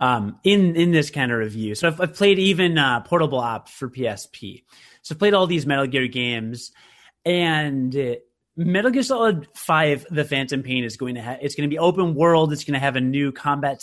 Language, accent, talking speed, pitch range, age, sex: English, American, 215 wpm, 130-175 Hz, 30-49, male